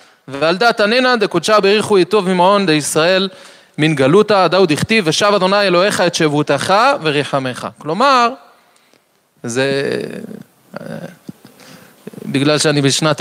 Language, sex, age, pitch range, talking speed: Hebrew, male, 30-49, 140-205 Hz, 110 wpm